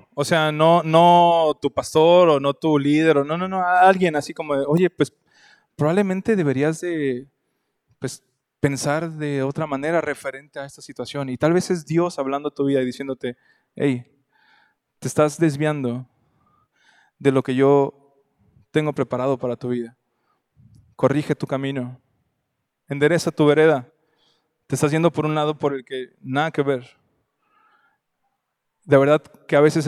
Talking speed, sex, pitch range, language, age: 155 wpm, male, 135-160 Hz, Spanish, 20-39